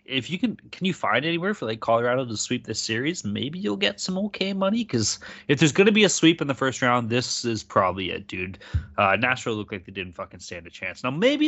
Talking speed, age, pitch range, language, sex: 255 wpm, 20-39, 105-175 Hz, English, male